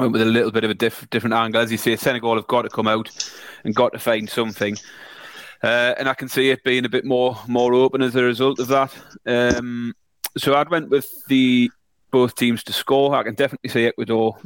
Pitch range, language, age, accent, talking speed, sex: 110-125 Hz, English, 30-49, British, 235 wpm, male